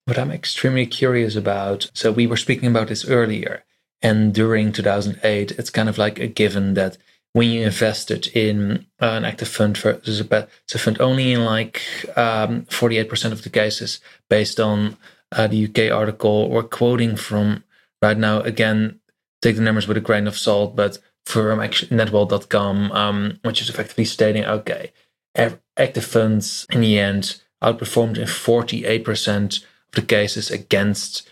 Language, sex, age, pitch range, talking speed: English, male, 20-39, 105-115 Hz, 165 wpm